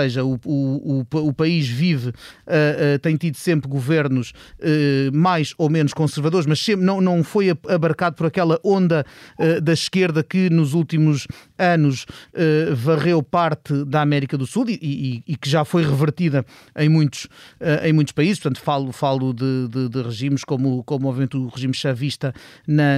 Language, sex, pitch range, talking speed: Portuguese, male, 140-170 Hz, 180 wpm